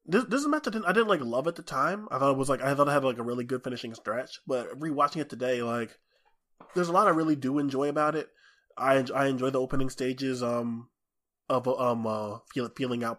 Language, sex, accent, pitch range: English, male, American, 120-140 Hz